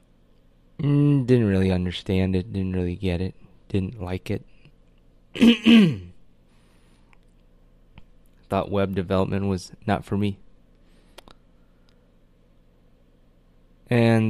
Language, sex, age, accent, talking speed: English, male, 20-39, American, 80 wpm